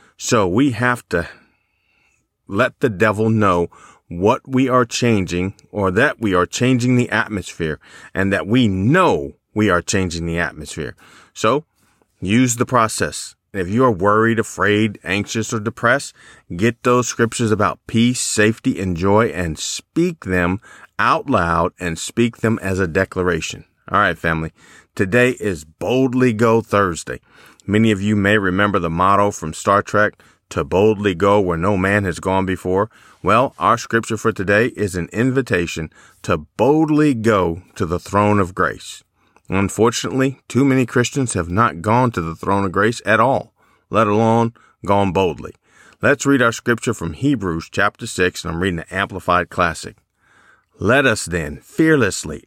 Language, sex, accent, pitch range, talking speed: English, male, American, 90-120 Hz, 160 wpm